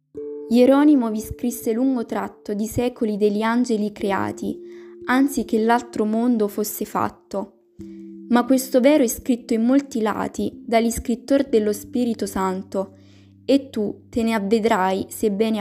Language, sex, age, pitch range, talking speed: Italian, female, 10-29, 195-245 Hz, 130 wpm